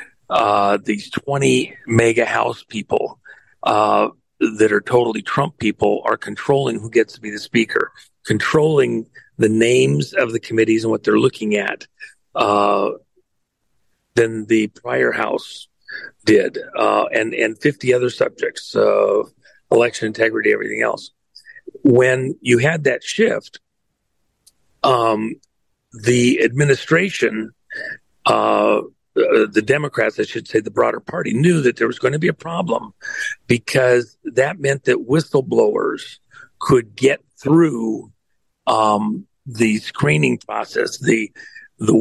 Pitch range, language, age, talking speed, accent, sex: 110-155 Hz, English, 40-59, 130 wpm, American, male